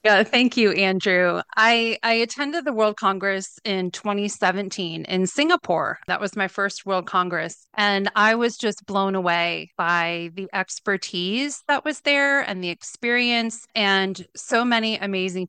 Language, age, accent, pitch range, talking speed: English, 30-49, American, 185-225 Hz, 150 wpm